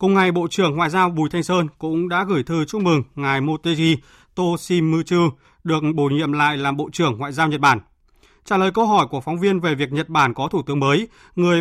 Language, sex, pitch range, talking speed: Vietnamese, male, 145-185 Hz, 235 wpm